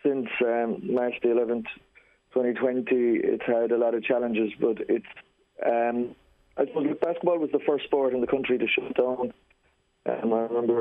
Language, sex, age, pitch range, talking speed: English, male, 30-49, 115-125 Hz, 180 wpm